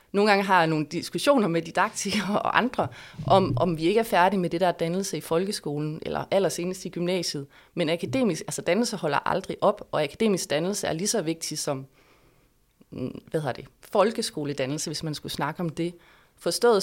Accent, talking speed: native, 185 wpm